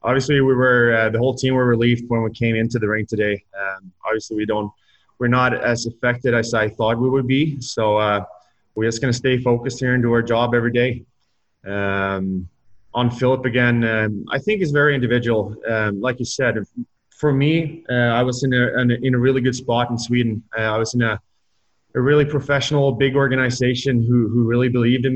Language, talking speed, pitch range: English, 215 wpm, 110-125 Hz